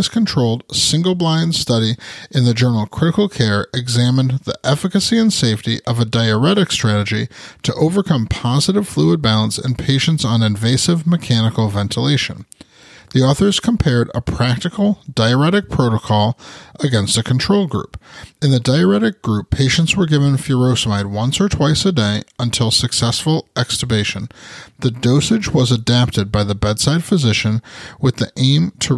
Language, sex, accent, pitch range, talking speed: English, male, American, 115-155 Hz, 140 wpm